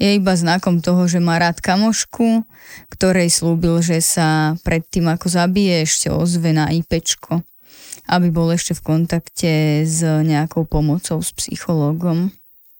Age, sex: 20-39, female